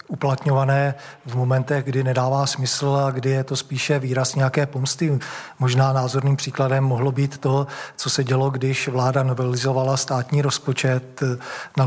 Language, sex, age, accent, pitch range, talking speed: Czech, male, 40-59, native, 130-140 Hz, 145 wpm